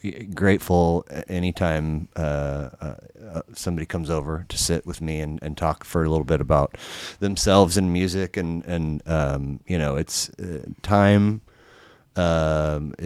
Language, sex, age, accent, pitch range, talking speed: English, male, 30-49, American, 75-90 Hz, 140 wpm